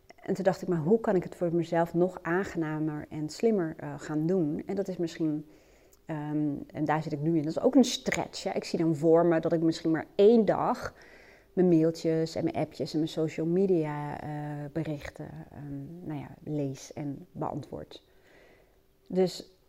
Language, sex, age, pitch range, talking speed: Dutch, female, 30-49, 155-185 Hz, 180 wpm